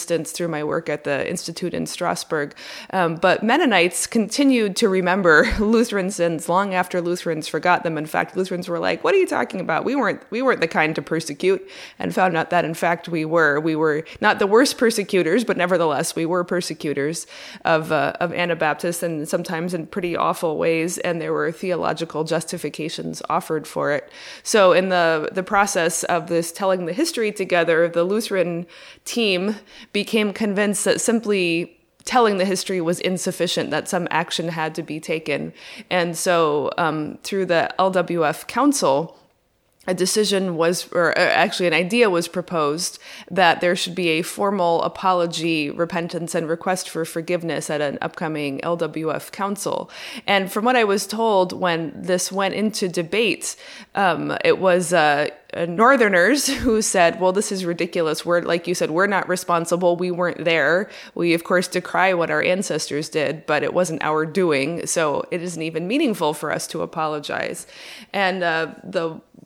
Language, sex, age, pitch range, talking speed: English, female, 20-39, 165-195 Hz, 170 wpm